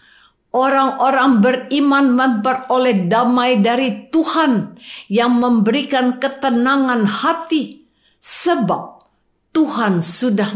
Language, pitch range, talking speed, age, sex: Indonesian, 195-280 Hz, 75 wpm, 50-69, female